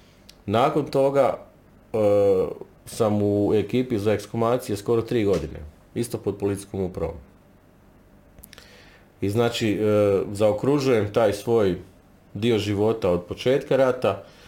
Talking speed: 110 wpm